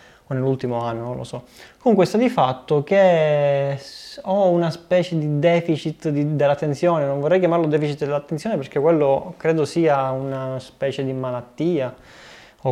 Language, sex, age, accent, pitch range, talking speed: Italian, male, 20-39, native, 135-180 Hz, 145 wpm